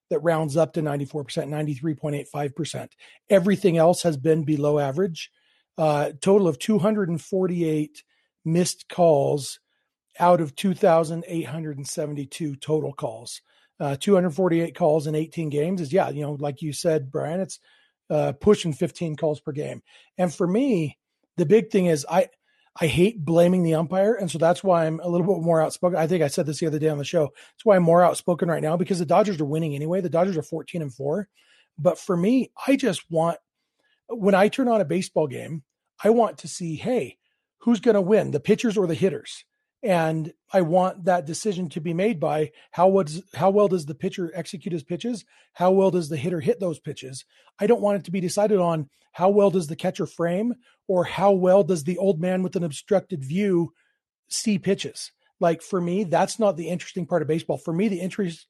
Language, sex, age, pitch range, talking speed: English, male, 40-59, 155-195 Hz, 195 wpm